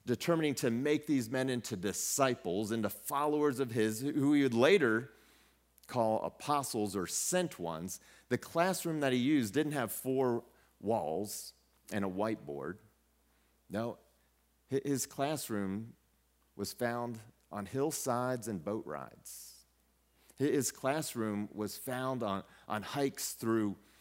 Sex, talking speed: male, 125 wpm